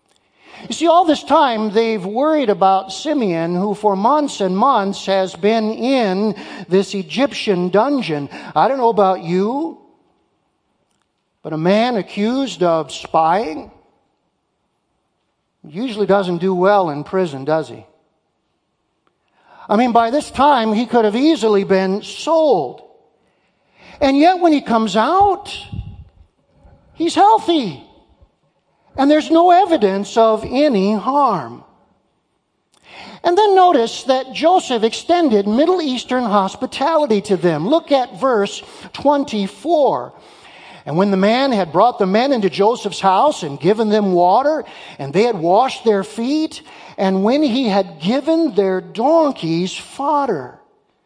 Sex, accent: male, American